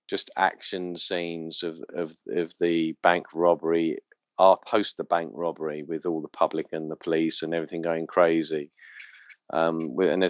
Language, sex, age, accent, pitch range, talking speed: English, male, 40-59, British, 80-95 Hz, 155 wpm